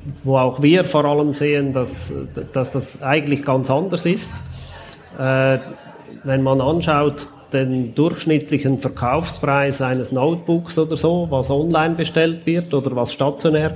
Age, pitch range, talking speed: 30-49, 130-150 Hz, 130 wpm